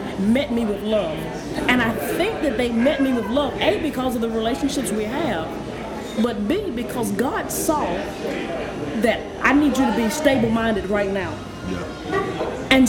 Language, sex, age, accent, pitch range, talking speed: English, female, 30-49, American, 220-280 Hz, 165 wpm